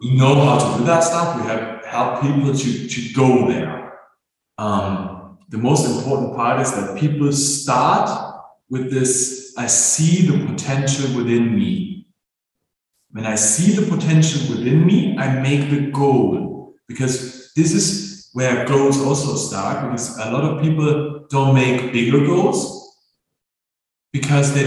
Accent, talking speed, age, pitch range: German, 150 wpm, 40-59, 125-160 Hz